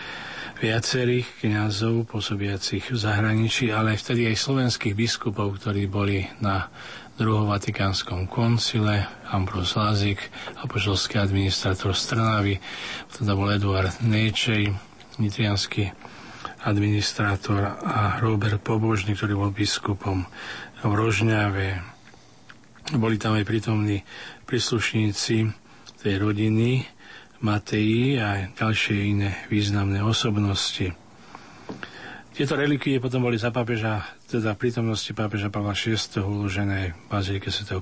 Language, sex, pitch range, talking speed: Slovak, male, 100-115 Hz, 100 wpm